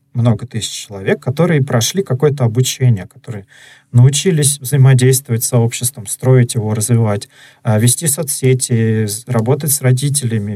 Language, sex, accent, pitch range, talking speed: Russian, male, native, 120-140 Hz, 115 wpm